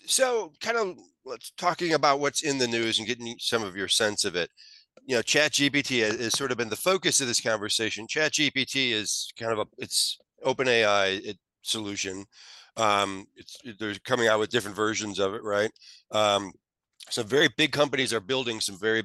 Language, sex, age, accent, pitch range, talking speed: English, male, 40-59, American, 100-140 Hz, 185 wpm